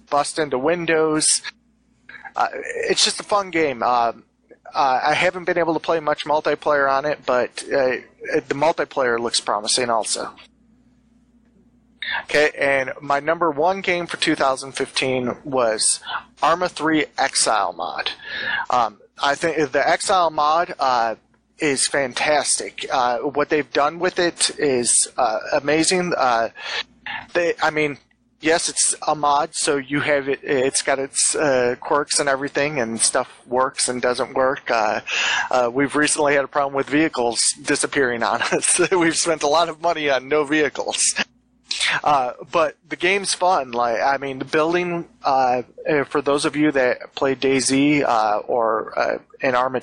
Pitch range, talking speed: 135-165 Hz, 155 wpm